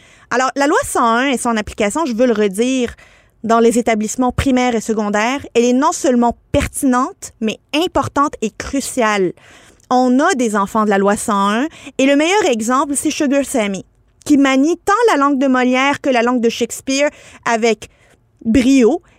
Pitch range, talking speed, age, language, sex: 215-275 Hz, 170 wpm, 30-49, French, female